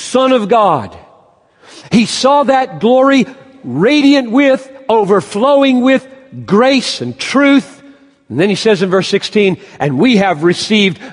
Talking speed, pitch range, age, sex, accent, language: 135 wpm, 195-270 Hz, 50-69, male, American, English